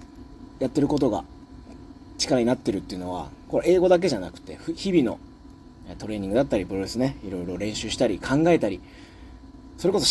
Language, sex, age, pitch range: Japanese, male, 30-49, 110-150 Hz